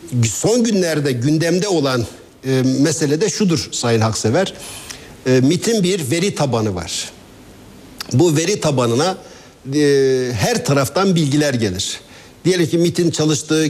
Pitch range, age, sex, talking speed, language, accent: 130-170 Hz, 60-79, male, 125 wpm, Turkish, native